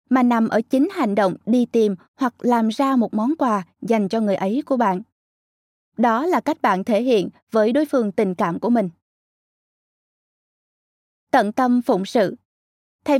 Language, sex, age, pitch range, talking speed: Vietnamese, female, 20-39, 210-275 Hz, 175 wpm